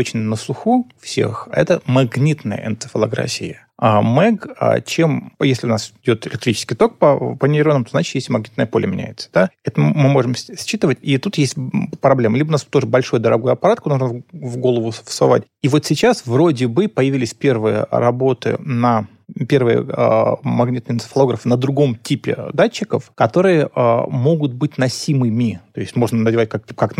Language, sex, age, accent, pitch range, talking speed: Russian, male, 30-49, native, 120-150 Hz, 160 wpm